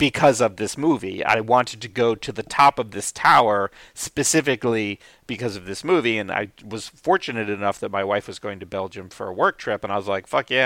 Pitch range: 100-120 Hz